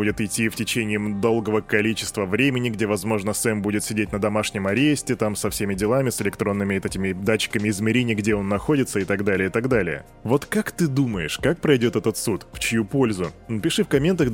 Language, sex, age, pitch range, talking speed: Russian, male, 20-39, 105-135 Hz, 195 wpm